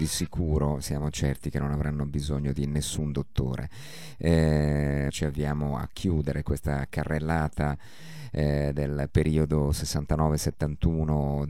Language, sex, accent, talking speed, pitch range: Italian, male, native, 115 wpm, 75-85 Hz